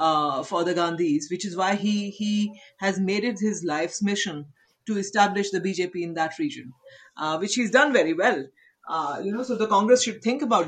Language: English